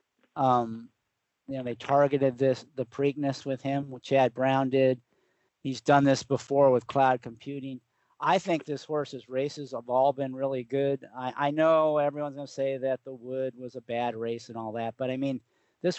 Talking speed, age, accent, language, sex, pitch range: 195 wpm, 40-59, American, English, male, 125-145 Hz